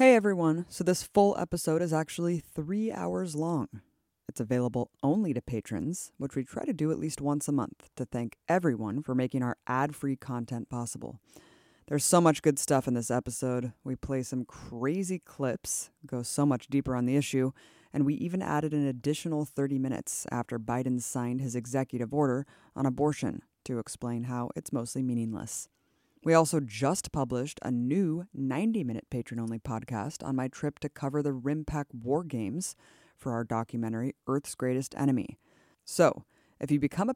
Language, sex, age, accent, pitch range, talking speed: English, female, 20-39, American, 125-155 Hz, 170 wpm